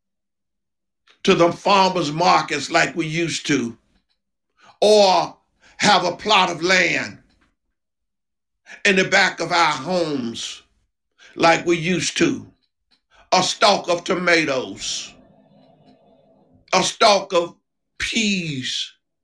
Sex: male